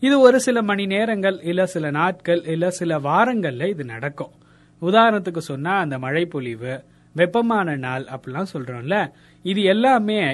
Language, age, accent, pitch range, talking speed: Tamil, 30-49, native, 145-205 Hz, 140 wpm